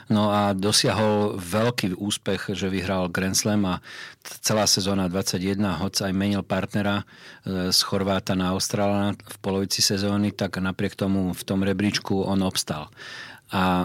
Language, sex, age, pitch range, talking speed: Slovak, male, 40-59, 95-105 Hz, 145 wpm